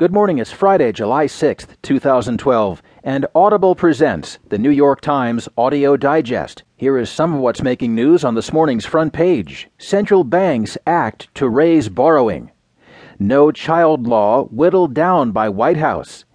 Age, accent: 40-59, American